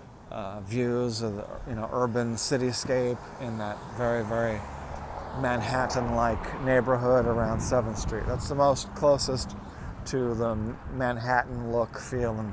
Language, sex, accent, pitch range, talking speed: English, male, American, 105-125 Hz, 125 wpm